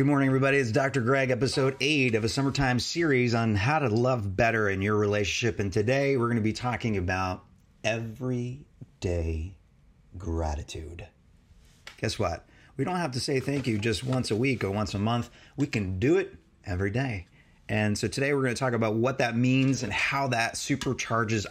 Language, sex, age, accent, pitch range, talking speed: English, male, 30-49, American, 100-125 Hz, 190 wpm